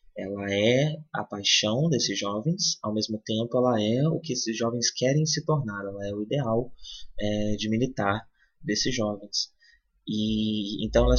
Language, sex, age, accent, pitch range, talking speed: Portuguese, male, 20-39, Brazilian, 105-130 Hz, 160 wpm